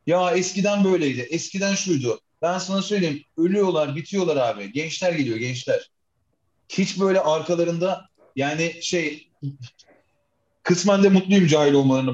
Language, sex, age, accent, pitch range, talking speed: Turkish, male, 40-59, native, 125-180 Hz, 120 wpm